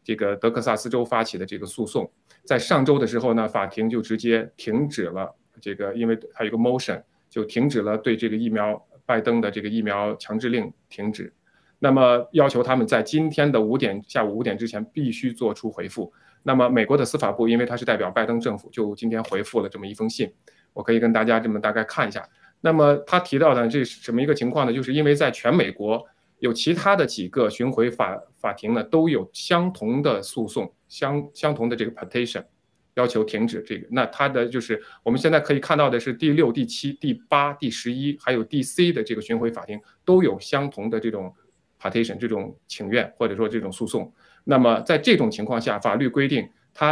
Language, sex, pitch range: Chinese, male, 110-140 Hz